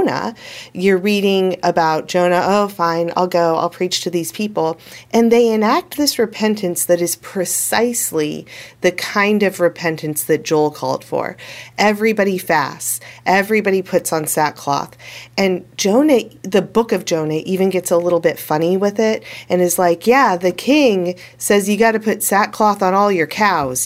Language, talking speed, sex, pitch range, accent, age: English, 165 wpm, female, 160-215 Hz, American, 40-59